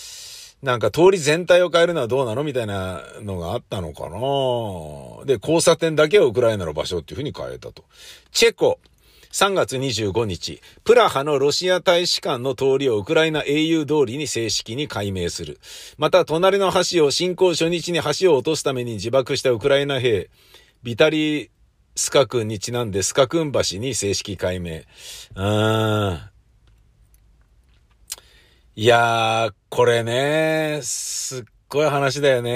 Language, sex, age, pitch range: Japanese, male, 50-69, 120-185 Hz